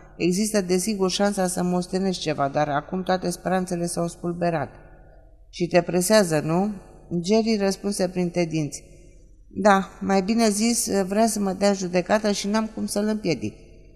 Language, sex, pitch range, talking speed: Romanian, female, 160-200 Hz, 150 wpm